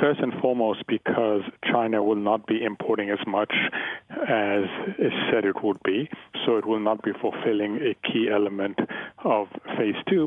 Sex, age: male, 40-59